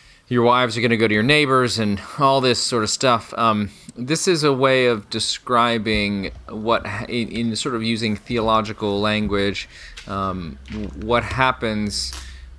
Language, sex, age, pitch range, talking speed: English, male, 30-49, 95-120 Hz, 155 wpm